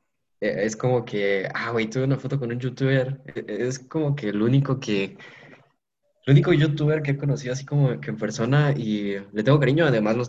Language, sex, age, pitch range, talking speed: Spanish, male, 20-39, 105-135 Hz, 200 wpm